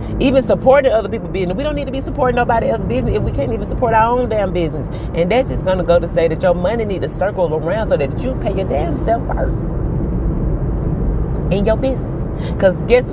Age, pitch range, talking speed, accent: 30-49, 145-185 Hz, 235 wpm, American